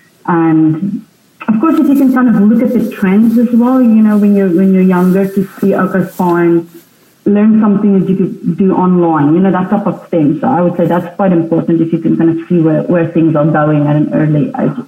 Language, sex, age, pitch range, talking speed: English, female, 30-49, 185-225 Hz, 240 wpm